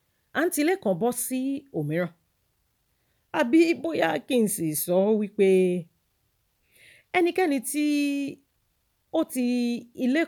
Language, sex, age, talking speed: English, female, 40-59, 110 wpm